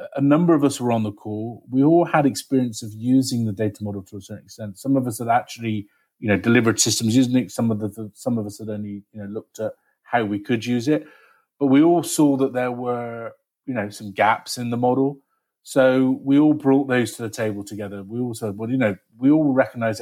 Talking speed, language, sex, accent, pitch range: 240 wpm, English, male, British, 110-135 Hz